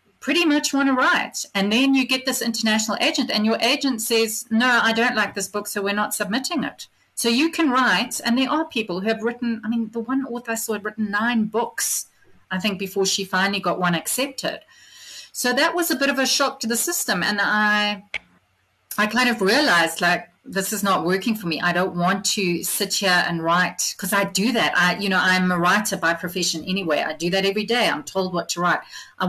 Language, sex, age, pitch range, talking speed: English, female, 30-49, 180-235 Hz, 230 wpm